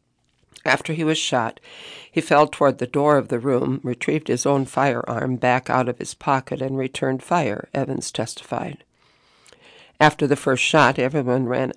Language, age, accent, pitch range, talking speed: English, 60-79, American, 130-155 Hz, 165 wpm